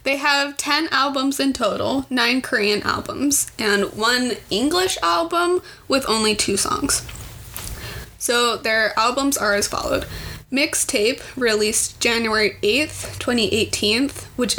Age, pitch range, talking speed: 20-39, 205-265 Hz, 120 wpm